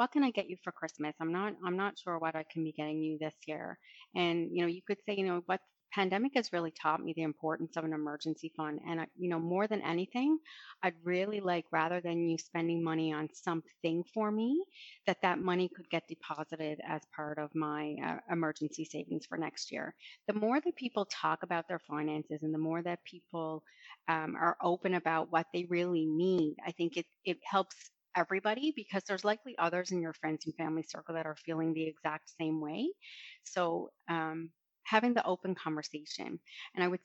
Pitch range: 155-185 Hz